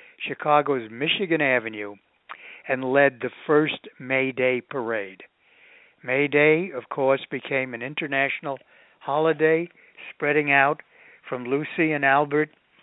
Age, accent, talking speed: 60-79, American, 110 wpm